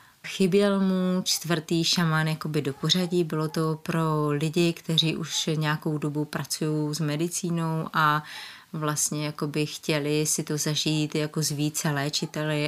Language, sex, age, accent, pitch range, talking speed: Czech, female, 30-49, native, 150-175 Hz, 130 wpm